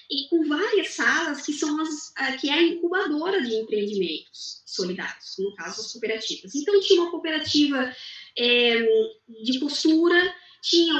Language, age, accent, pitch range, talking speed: Portuguese, 20-39, Brazilian, 225-330 Hz, 145 wpm